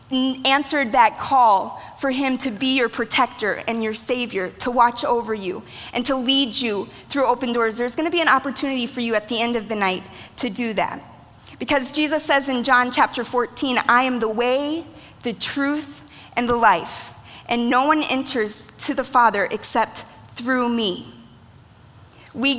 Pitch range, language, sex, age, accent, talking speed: 235-275 Hz, English, female, 20-39, American, 180 wpm